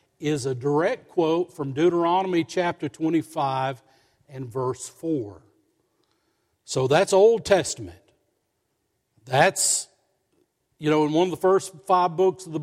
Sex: male